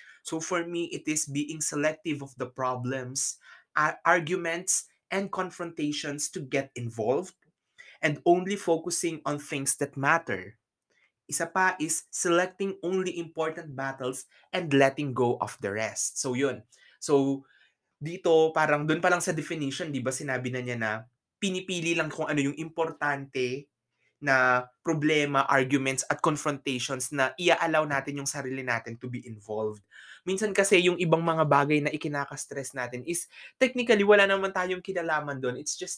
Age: 20-39